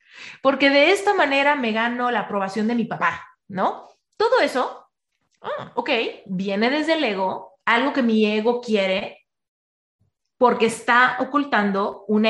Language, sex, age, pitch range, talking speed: Spanish, female, 30-49, 200-250 Hz, 140 wpm